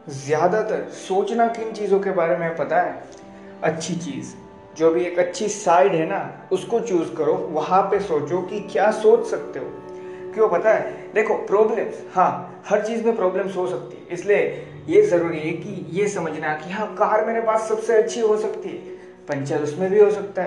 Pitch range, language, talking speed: 155-210 Hz, Hindi, 190 wpm